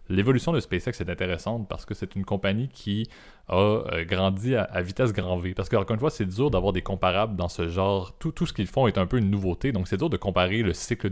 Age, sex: 30-49, male